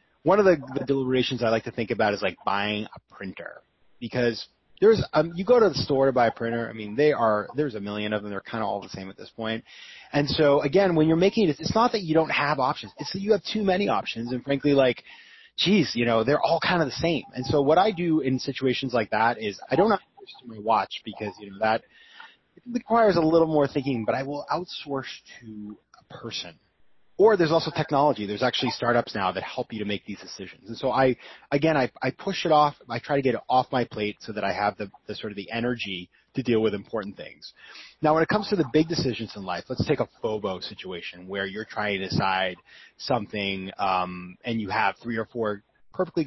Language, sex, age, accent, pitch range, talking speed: English, male, 30-49, American, 105-155 Hz, 240 wpm